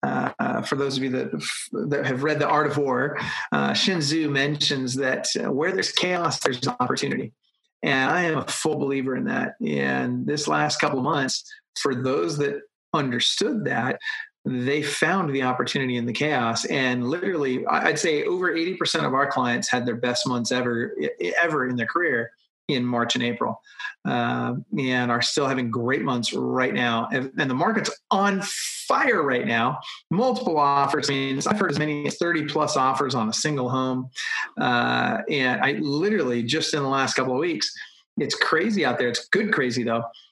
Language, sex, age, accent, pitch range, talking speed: English, male, 30-49, American, 125-170 Hz, 185 wpm